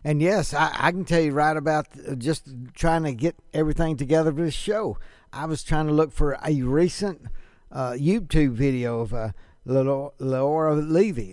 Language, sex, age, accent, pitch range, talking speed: English, male, 60-79, American, 125-165 Hz, 175 wpm